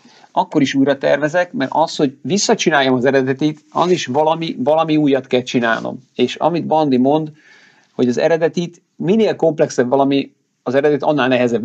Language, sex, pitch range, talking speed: Hungarian, male, 130-175 Hz, 160 wpm